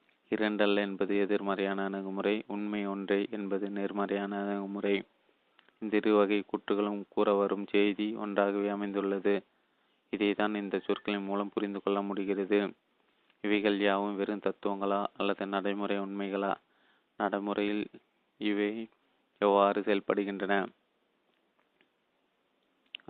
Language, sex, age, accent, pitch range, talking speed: Tamil, male, 20-39, native, 100-105 Hz, 95 wpm